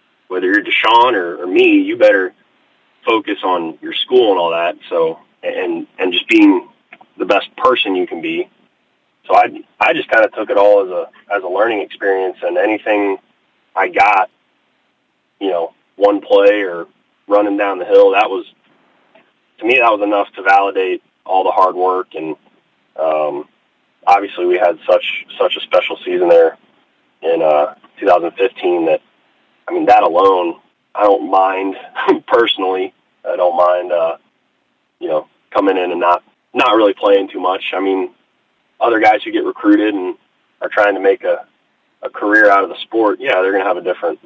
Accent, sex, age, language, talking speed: American, male, 30-49, English, 180 wpm